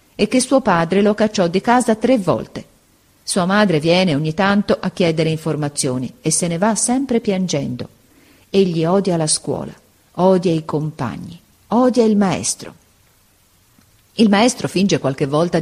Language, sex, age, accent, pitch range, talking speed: Italian, female, 40-59, native, 145-200 Hz, 150 wpm